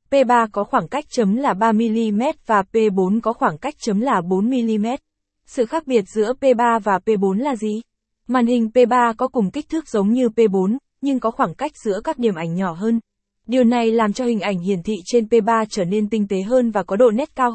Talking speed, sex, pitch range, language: 220 wpm, female, 205-250 Hz, Vietnamese